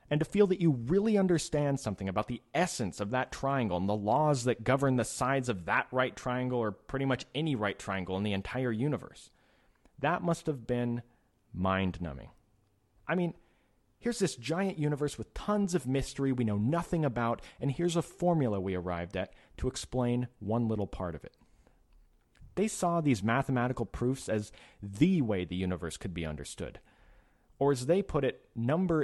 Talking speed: 180 wpm